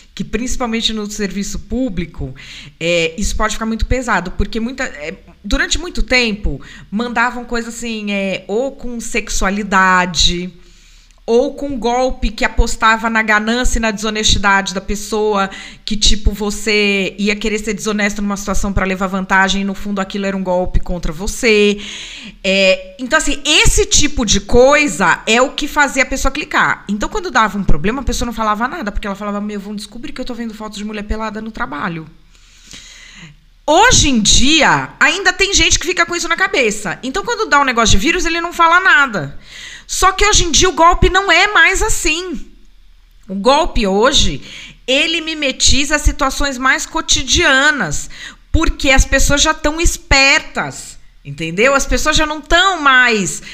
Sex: female